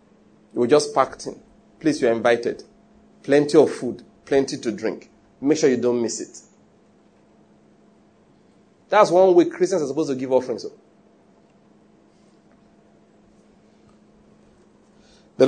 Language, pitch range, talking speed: English, 160-235 Hz, 120 wpm